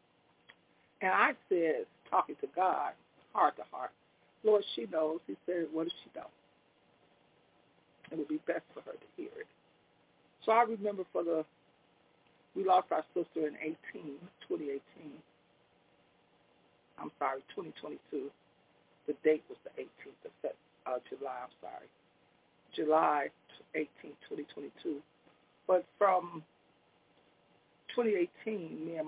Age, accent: 60-79, American